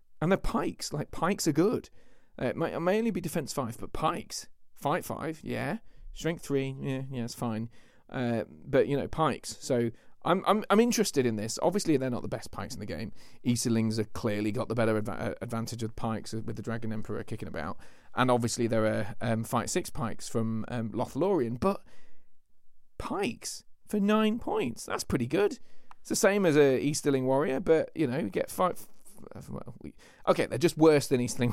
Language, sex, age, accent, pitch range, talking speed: English, male, 40-59, British, 115-155 Hz, 195 wpm